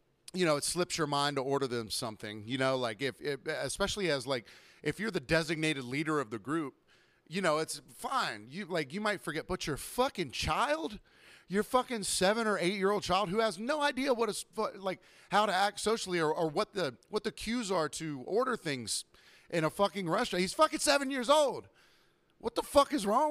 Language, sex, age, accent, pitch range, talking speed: English, male, 30-49, American, 145-210 Hz, 215 wpm